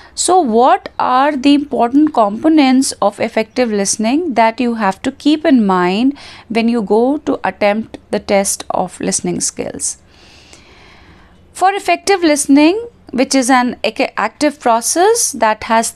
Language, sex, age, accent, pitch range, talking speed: English, female, 30-49, Indian, 200-275 Hz, 135 wpm